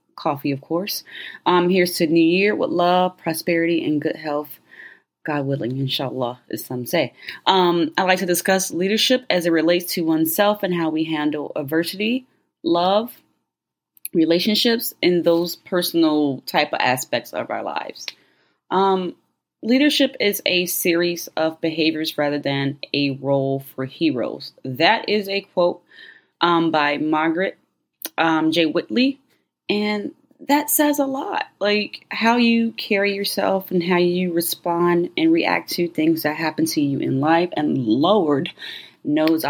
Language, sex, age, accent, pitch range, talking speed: English, female, 30-49, American, 155-200 Hz, 145 wpm